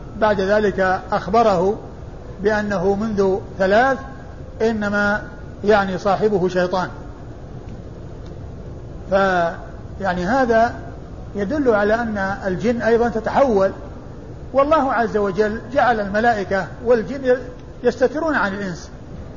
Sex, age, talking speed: male, 50-69, 85 wpm